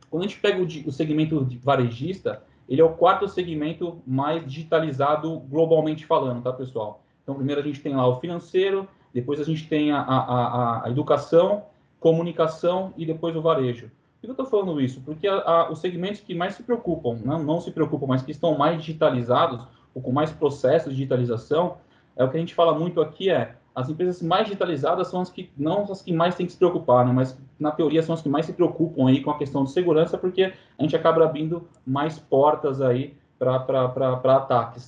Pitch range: 135-170 Hz